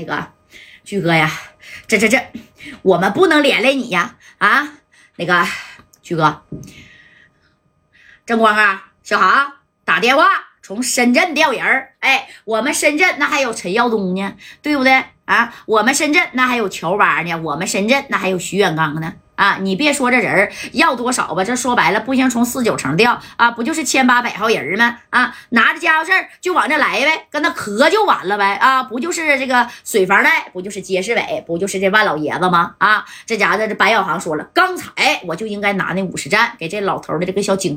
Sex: female